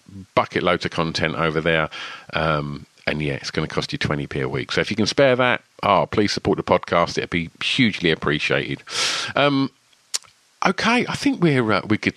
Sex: male